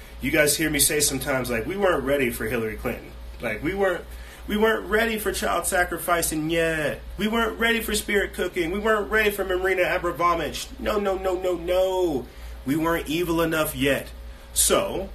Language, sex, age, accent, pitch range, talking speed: English, male, 30-49, American, 110-160 Hz, 180 wpm